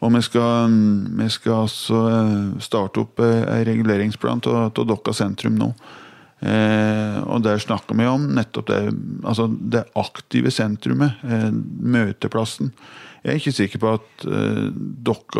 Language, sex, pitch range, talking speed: English, male, 105-115 Hz, 120 wpm